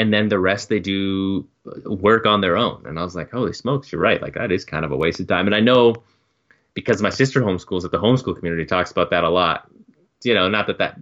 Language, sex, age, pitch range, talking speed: English, male, 20-39, 90-110 Hz, 260 wpm